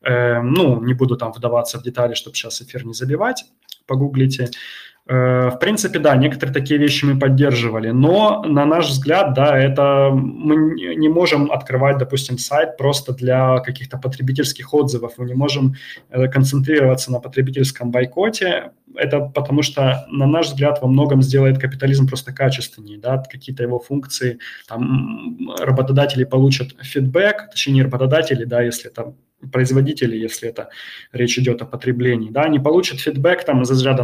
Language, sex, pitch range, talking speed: Russian, male, 125-145 Hz, 150 wpm